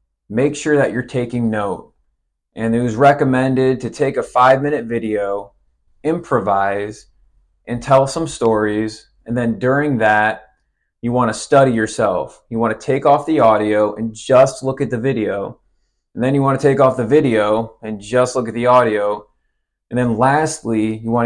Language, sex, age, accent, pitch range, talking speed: English, male, 20-39, American, 110-125 Hz, 180 wpm